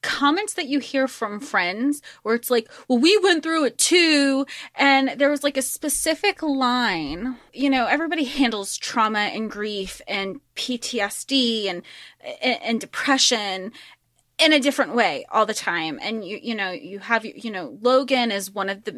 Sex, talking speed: female, 170 wpm